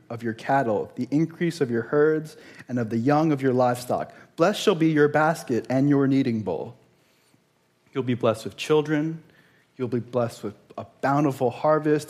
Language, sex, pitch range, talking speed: English, male, 120-150 Hz, 180 wpm